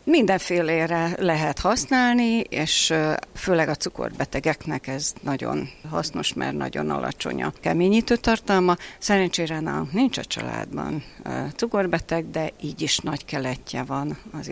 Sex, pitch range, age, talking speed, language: female, 150-195 Hz, 60-79, 120 wpm, Hungarian